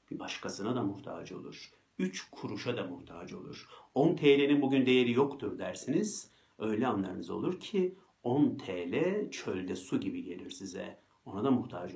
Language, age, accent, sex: Turkish, 50-69, native, male